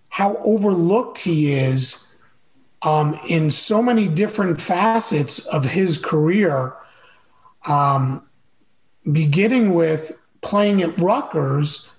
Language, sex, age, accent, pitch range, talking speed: English, male, 40-59, American, 160-210 Hz, 95 wpm